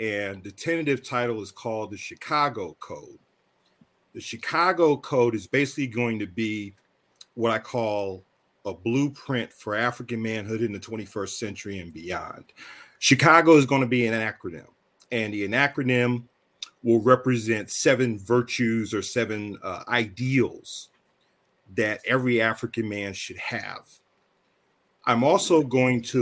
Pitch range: 110-145 Hz